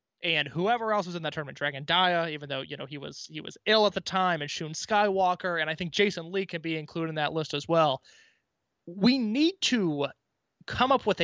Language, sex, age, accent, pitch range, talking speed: English, male, 20-39, American, 160-205 Hz, 215 wpm